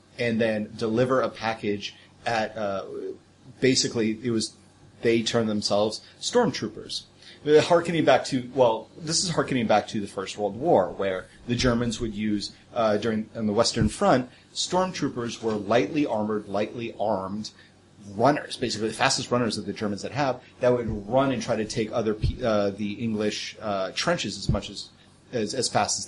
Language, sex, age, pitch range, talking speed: English, male, 30-49, 105-125 Hz, 170 wpm